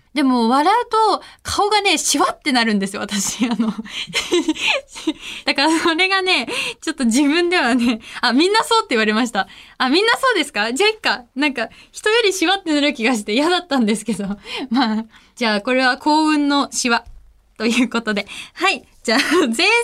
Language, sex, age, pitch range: Japanese, female, 20-39, 225-335 Hz